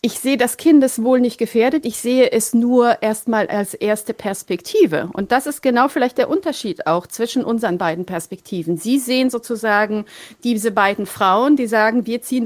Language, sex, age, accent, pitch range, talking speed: German, female, 40-59, German, 205-265 Hz, 180 wpm